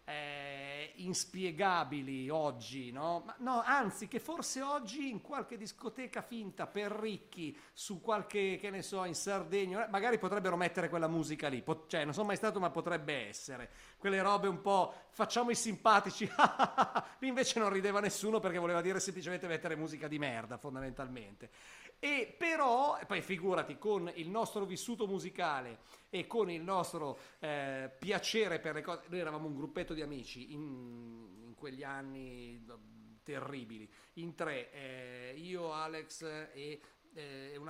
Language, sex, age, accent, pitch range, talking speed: Italian, male, 40-59, native, 140-195 Hz, 155 wpm